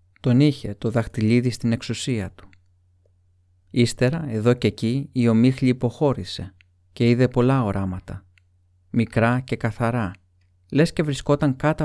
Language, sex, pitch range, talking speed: Greek, male, 90-130 Hz, 125 wpm